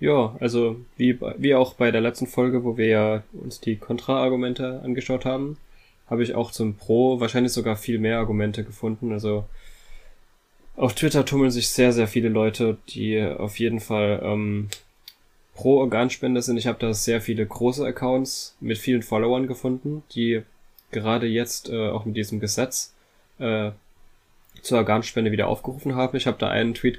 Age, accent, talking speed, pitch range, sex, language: 10-29, German, 165 wpm, 105-120 Hz, male, German